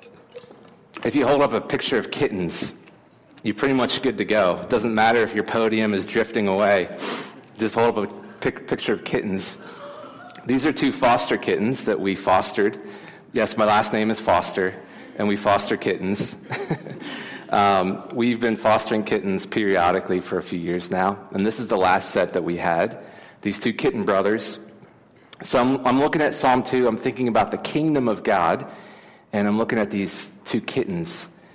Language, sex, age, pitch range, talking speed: English, male, 30-49, 95-115 Hz, 175 wpm